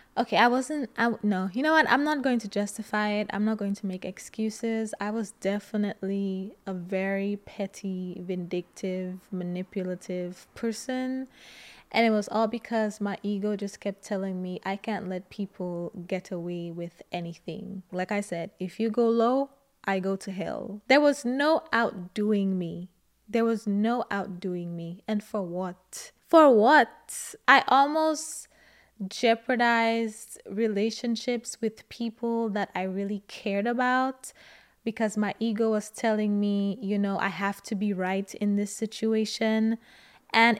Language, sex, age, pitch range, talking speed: English, female, 20-39, 195-230 Hz, 150 wpm